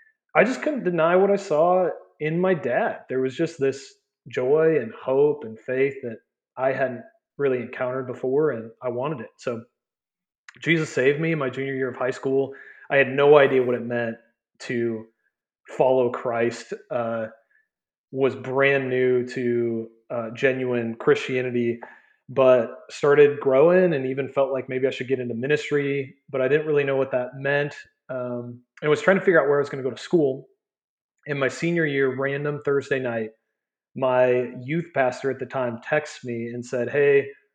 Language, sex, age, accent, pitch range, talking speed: English, male, 30-49, American, 125-150 Hz, 180 wpm